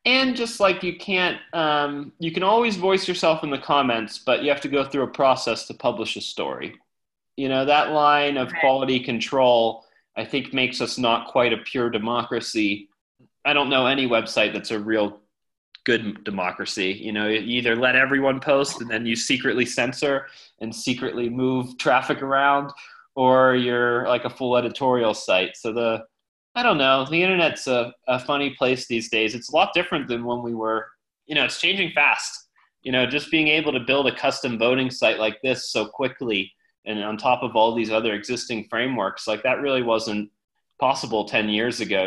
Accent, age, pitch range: American, 30-49, 115-140 Hz